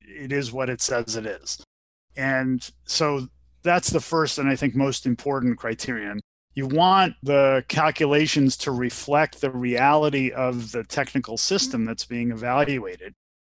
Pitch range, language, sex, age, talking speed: 120-145 Hz, English, male, 30-49, 145 wpm